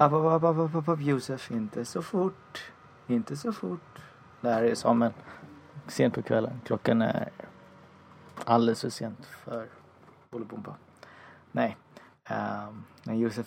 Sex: male